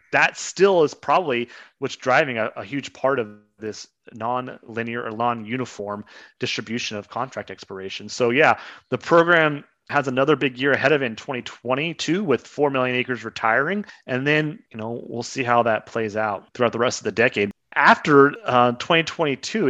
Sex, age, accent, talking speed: male, 30-49, American, 170 wpm